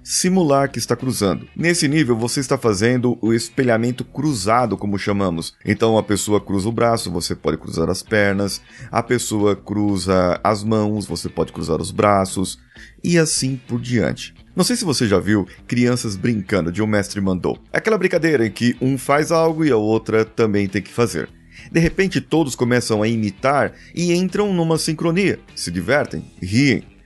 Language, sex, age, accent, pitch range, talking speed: Portuguese, male, 30-49, Brazilian, 95-140 Hz, 175 wpm